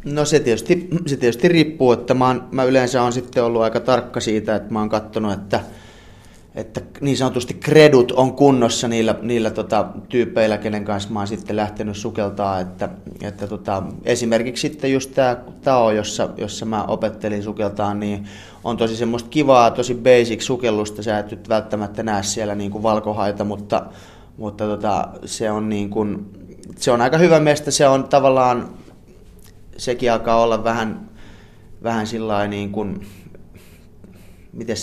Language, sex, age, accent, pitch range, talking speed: Finnish, male, 20-39, native, 105-120 Hz, 155 wpm